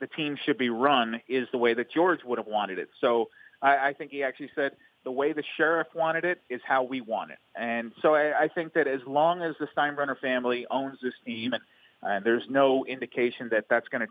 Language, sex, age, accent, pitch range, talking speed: English, male, 30-49, American, 120-155 Hz, 240 wpm